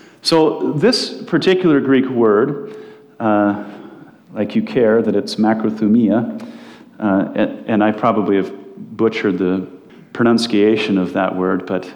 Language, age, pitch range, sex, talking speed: English, 40-59, 110-150 Hz, male, 125 wpm